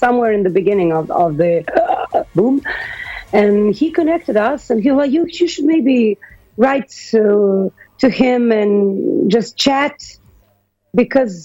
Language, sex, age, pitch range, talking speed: English, female, 40-59, 175-235 Hz, 150 wpm